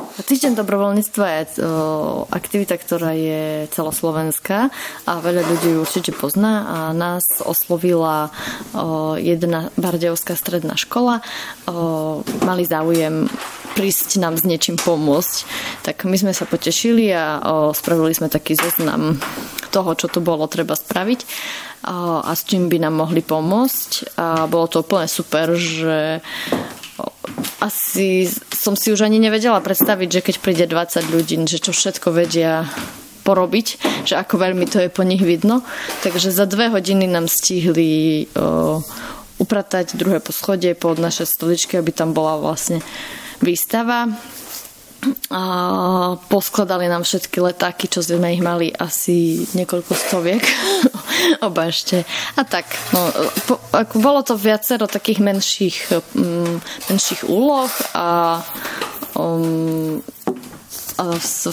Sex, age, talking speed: female, 20-39, 135 wpm